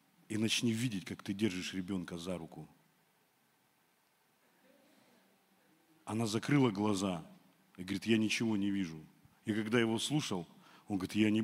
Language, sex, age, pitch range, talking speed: Russian, male, 40-59, 95-120 Hz, 135 wpm